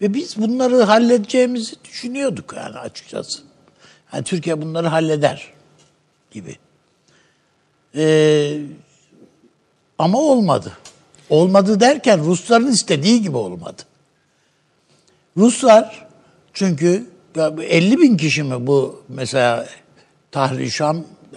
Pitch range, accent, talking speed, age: 145-220 Hz, native, 85 wpm, 60-79